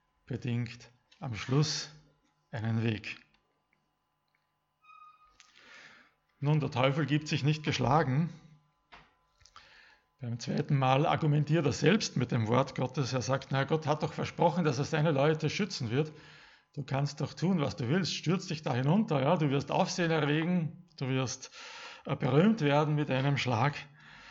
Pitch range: 130-170 Hz